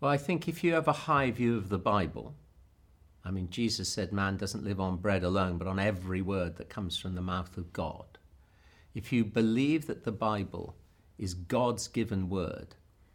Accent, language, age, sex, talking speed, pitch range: British, English, 50-69, male, 195 wpm, 95-125 Hz